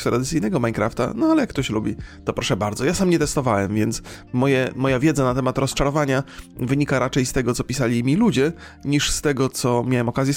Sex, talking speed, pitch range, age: male, 205 wpm, 115-145 Hz, 30-49